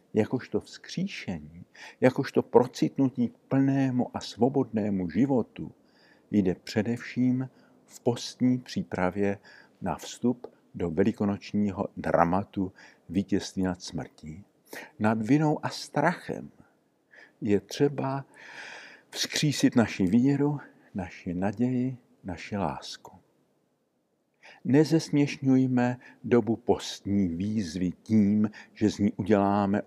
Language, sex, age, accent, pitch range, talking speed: Czech, male, 50-69, native, 95-125 Hz, 90 wpm